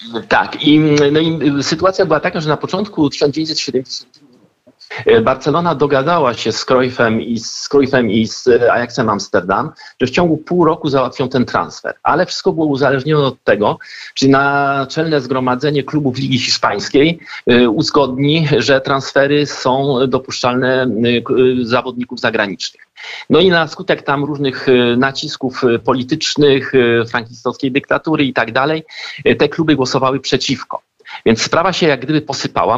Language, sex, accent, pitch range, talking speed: Polish, male, native, 125-155 Hz, 135 wpm